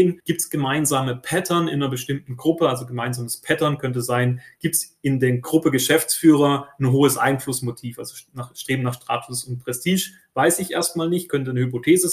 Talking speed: 175 wpm